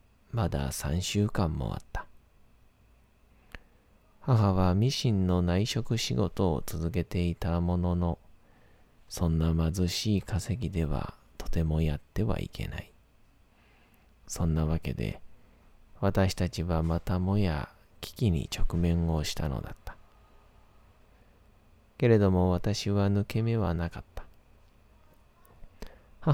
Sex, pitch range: male, 85-100 Hz